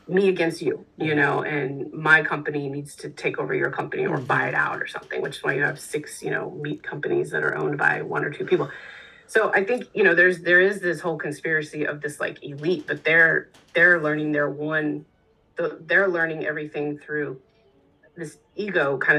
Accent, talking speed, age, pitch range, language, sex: American, 205 wpm, 30-49, 150-200 Hz, English, female